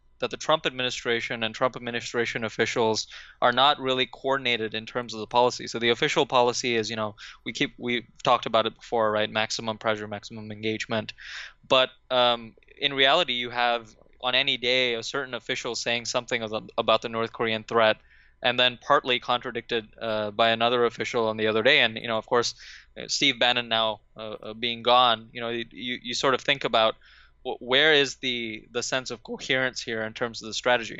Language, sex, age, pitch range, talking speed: English, male, 20-39, 110-125 Hz, 190 wpm